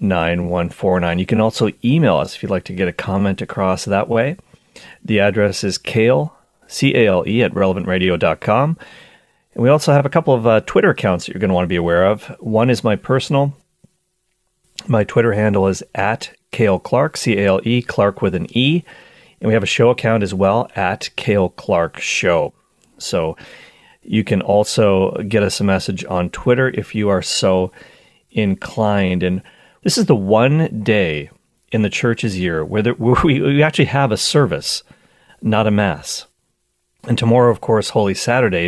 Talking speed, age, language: 185 wpm, 40-59, English